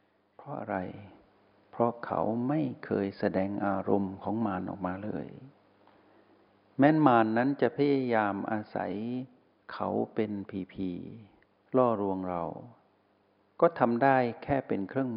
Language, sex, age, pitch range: Thai, male, 60-79, 100-120 Hz